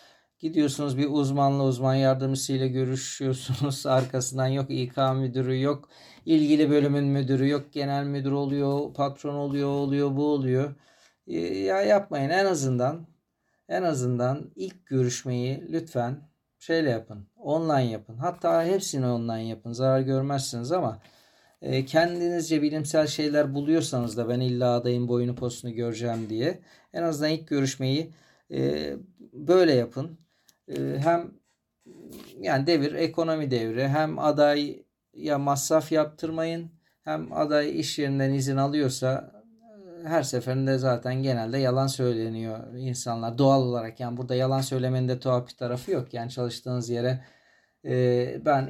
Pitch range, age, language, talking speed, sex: 125-155 Hz, 50-69, Turkish, 125 wpm, male